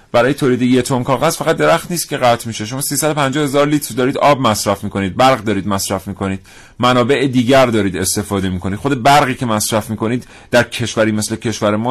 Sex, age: male, 40-59